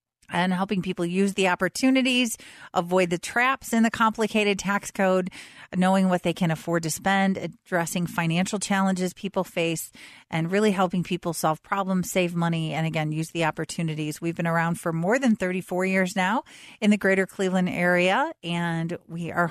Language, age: English, 40-59